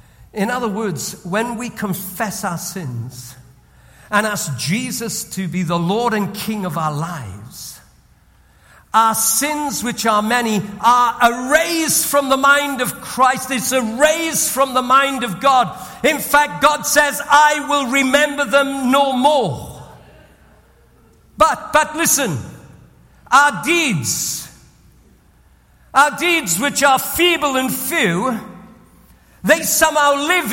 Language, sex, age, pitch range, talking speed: English, male, 50-69, 215-295 Hz, 125 wpm